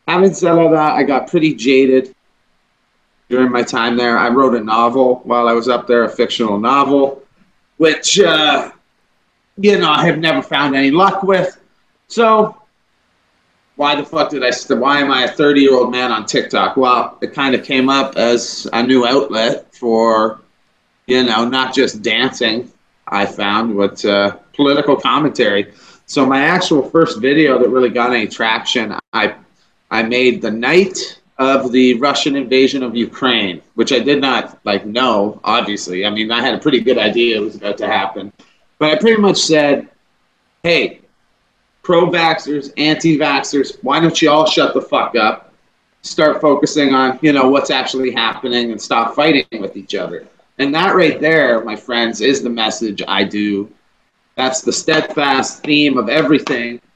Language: English